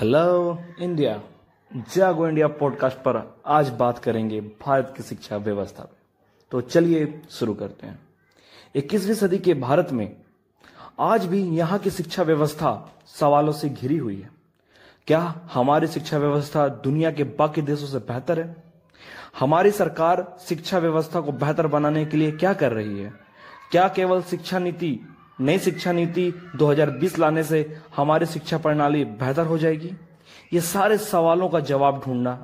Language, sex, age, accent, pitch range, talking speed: English, male, 30-49, Indian, 130-170 Hz, 150 wpm